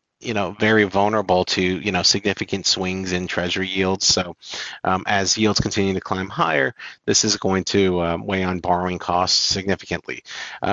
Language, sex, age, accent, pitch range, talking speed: English, male, 40-59, American, 90-110 Hz, 175 wpm